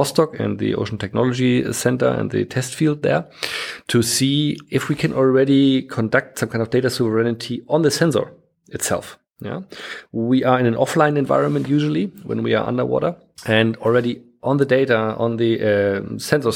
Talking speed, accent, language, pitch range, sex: 170 wpm, German, English, 105-125 Hz, male